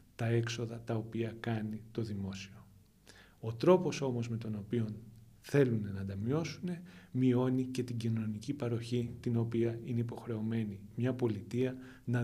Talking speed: 140 wpm